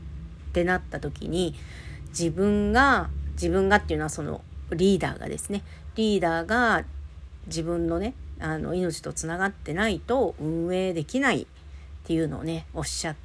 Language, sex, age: Japanese, female, 50-69